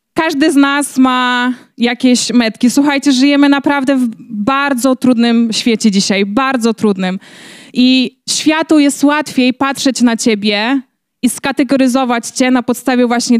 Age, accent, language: 20-39, native, Polish